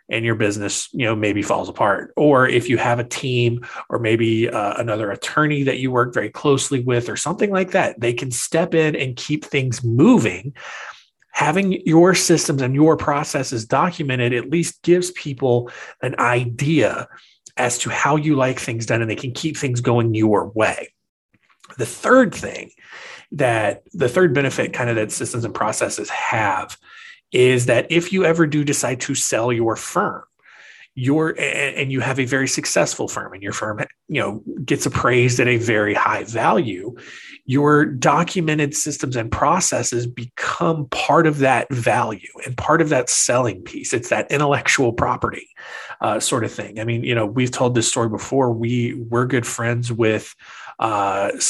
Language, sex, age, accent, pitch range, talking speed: English, male, 30-49, American, 115-150 Hz, 175 wpm